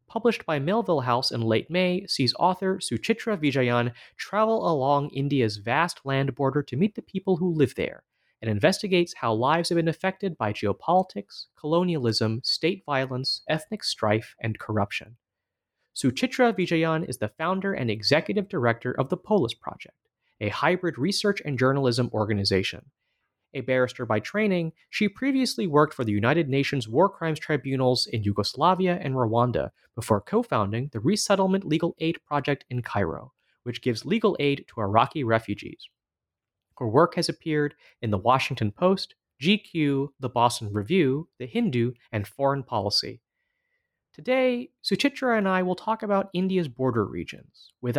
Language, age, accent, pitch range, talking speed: English, 30-49, American, 120-185 Hz, 150 wpm